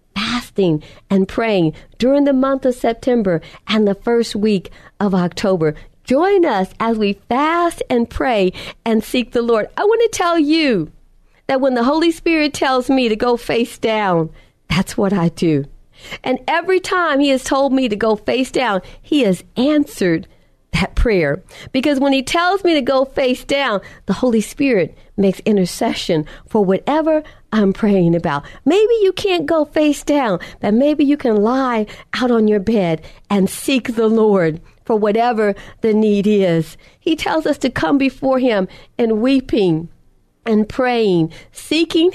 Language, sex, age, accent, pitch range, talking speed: English, female, 50-69, American, 200-285 Hz, 165 wpm